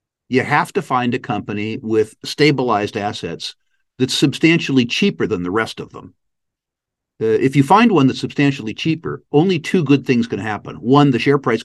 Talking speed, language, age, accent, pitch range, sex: 180 wpm, English, 50-69, American, 120-145 Hz, male